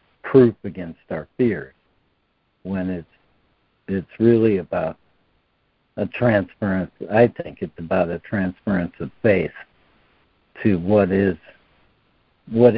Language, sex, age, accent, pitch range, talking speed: English, male, 60-79, American, 95-115 Hz, 110 wpm